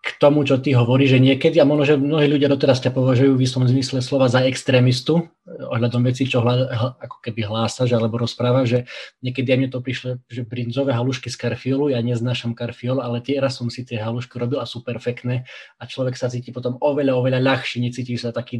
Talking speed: 215 wpm